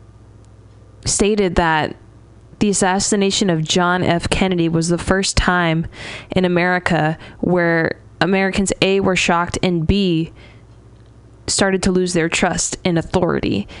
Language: English